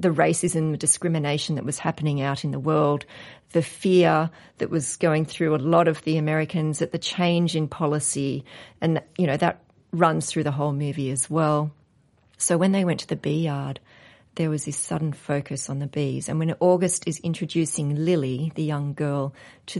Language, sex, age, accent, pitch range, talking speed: English, female, 40-59, Australian, 140-170 Hz, 195 wpm